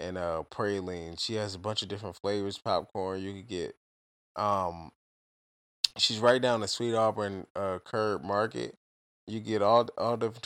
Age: 20-39